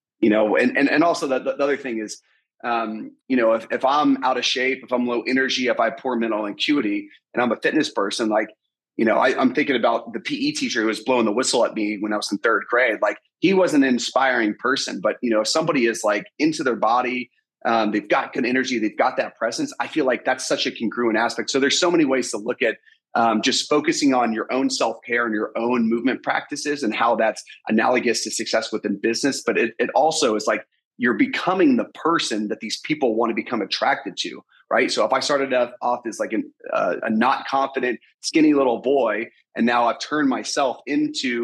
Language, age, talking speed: English, 30-49, 230 wpm